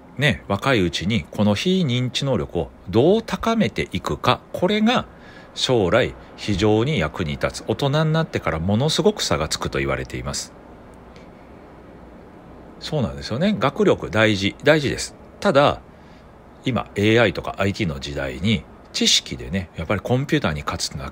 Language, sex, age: Japanese, male, 40-59